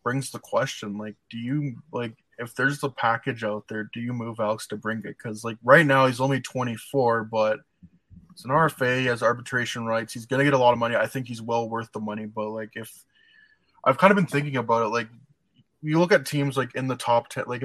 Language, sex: English, male